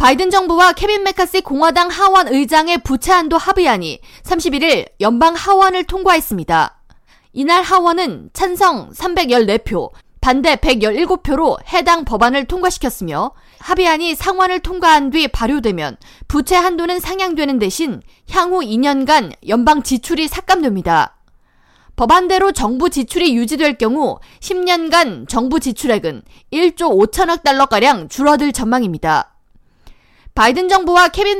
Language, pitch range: Korean, 255-360 Hz